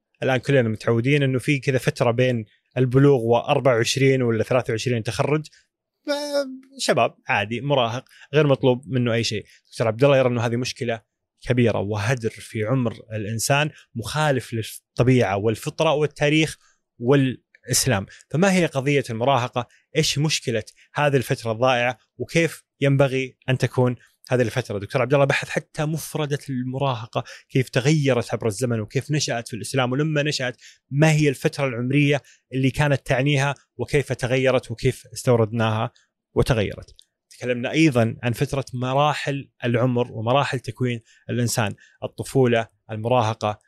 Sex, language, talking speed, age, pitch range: male, Arabic, 130 wpm, 20-39, 115-140 Hz